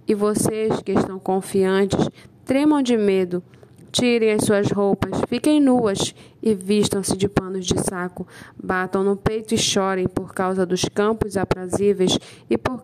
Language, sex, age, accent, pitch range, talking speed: Portuguese, female, 10-29, Brazilian, 185-210 Hz, 150 wpm